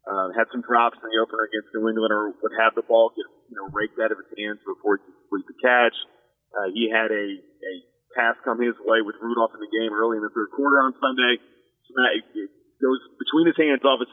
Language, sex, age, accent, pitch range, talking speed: English, male, 40-59, American, 110-130 Hz, 250 wpm